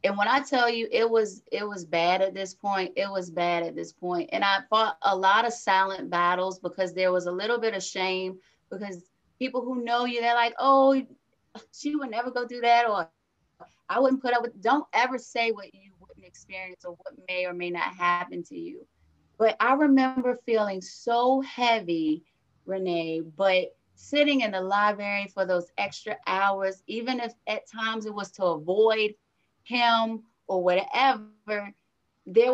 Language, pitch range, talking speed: English, 185-240 Hz, 185 wpm